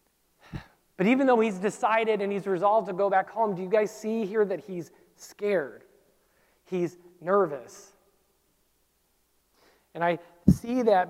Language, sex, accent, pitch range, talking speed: English, male, American, 180-225 Hz, 140 wpm